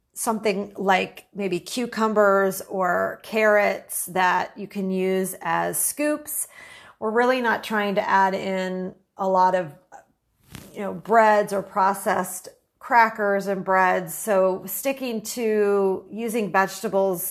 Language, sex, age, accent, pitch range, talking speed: English, female, 40-59, American, 190-220 Hz, 120 wpm